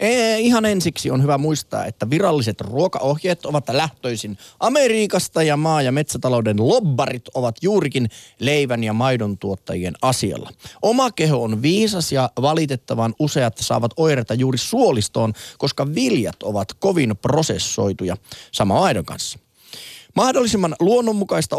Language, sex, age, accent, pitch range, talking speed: Finnish, male, 30-49, native, 115-165 Hz, 125 wpm